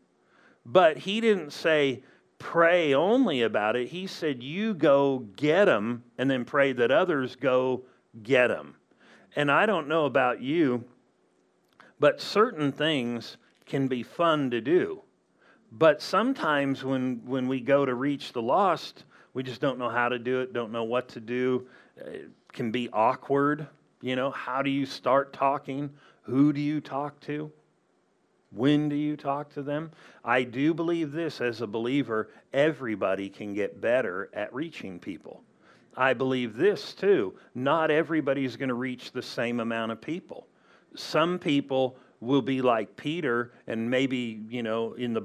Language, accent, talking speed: English, American, 160 wpm